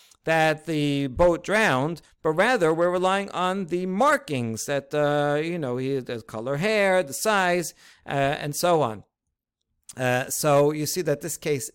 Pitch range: 130-165 Hz